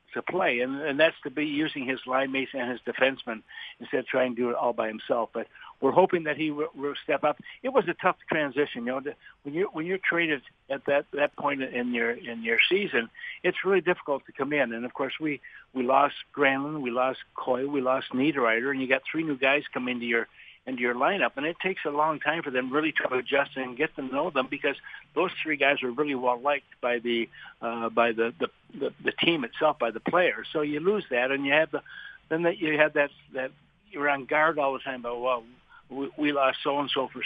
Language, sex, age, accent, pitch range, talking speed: English, male, 60-79, American, 125-150 Hz, 245 wpm